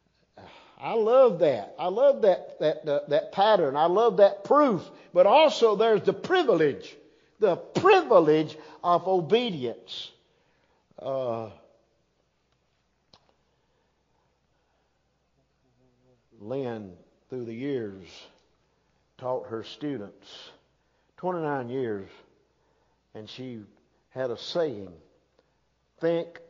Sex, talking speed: male, 90 wpm